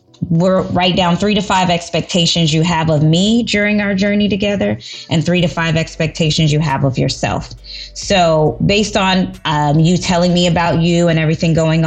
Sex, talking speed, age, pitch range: female, 180 wpm, 20-39, 155-185 Hz